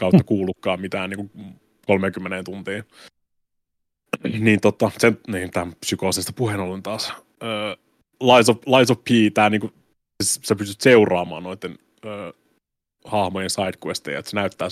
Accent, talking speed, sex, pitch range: native, 125 wpm, male, 95-120 Hz